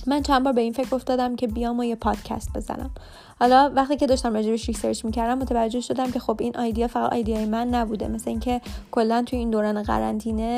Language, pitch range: Persian, 225-260 Hz